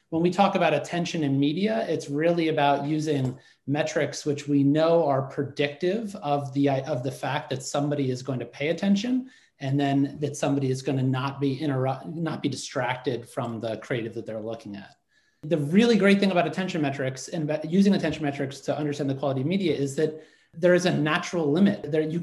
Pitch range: 135-160 Hz